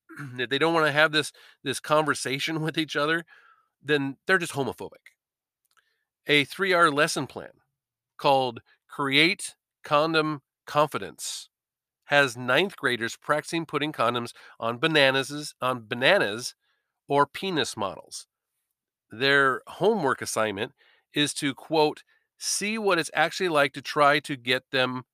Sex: male